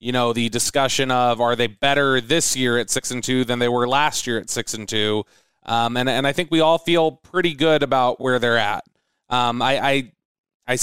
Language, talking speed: English, 220 wpm